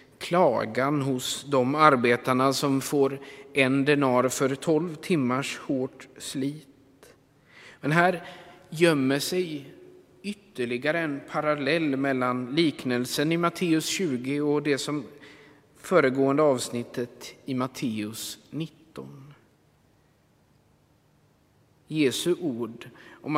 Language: Swedish